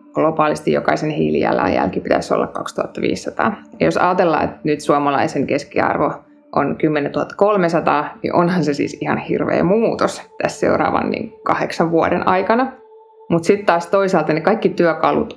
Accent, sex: native, female